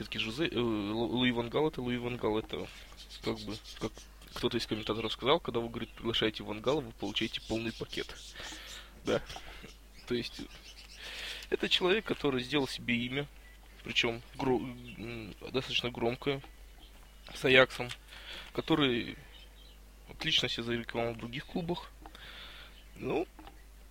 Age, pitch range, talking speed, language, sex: 20-39, 110-130 Hz, 120 wpm, Russian, male